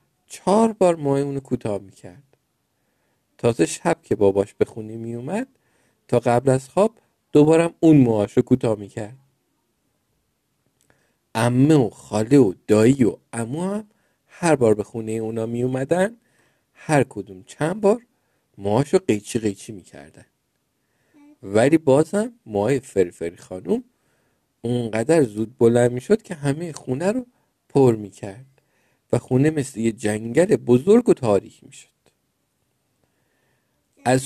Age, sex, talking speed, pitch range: 50-69, male, 120 wpm, 110-155 Hz